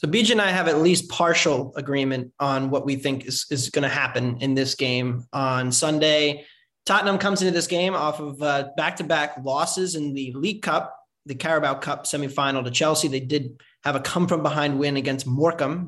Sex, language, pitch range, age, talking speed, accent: male, English, 140-170 Hz, 20-39, 200 wpm, American